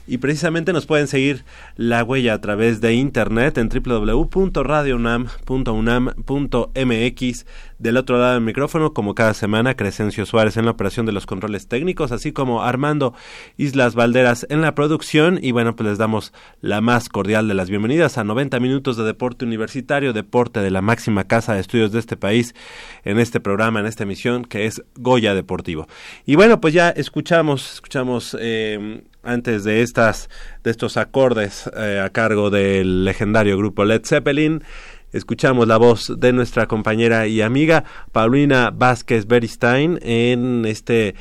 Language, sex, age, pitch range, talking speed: Spanish, male, 30-49, 110-130 Hz, 160 wpm